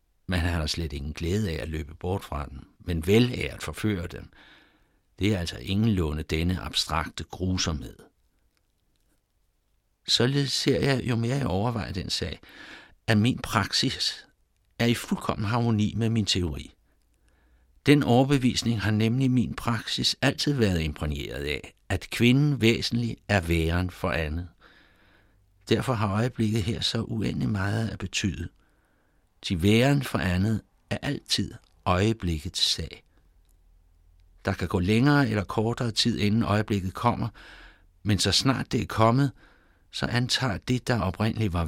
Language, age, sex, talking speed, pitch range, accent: Danish, 60-79, male, 145 wpm, 85-115 Hz, native